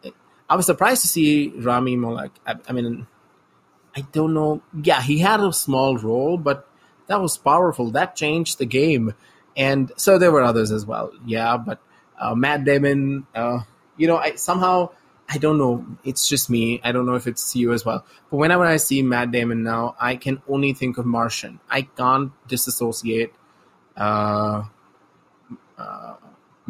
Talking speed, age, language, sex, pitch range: 170 wpm, 20-39, English, male, 115-145 Hz